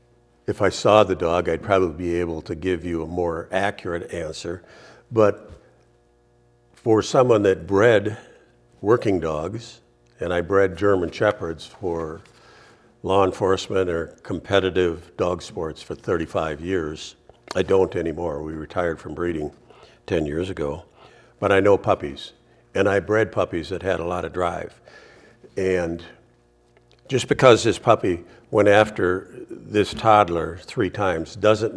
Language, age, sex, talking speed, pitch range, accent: English, 60-79, male, 140 wpm, 85-115 Hz, American